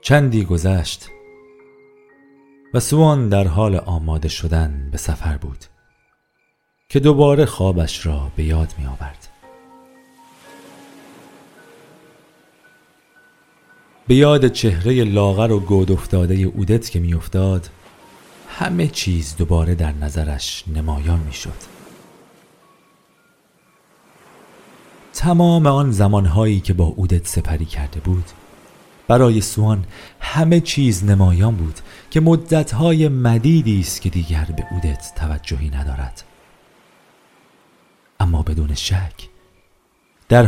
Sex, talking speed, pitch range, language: male, 95 wpm, 80-110 Hz, Persian